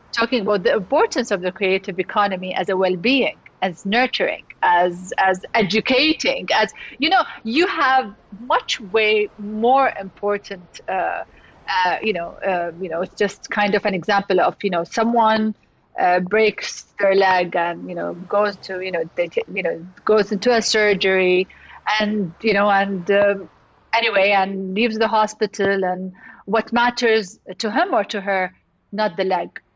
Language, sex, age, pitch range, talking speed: English, female, 30-49, 185-225 Hz, 165 wpm